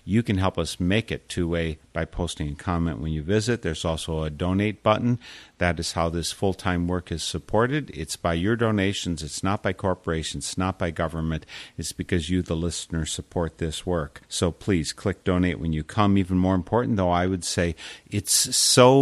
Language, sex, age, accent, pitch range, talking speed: English, male, 50-69, American, 85-95 Hz, 200 wpm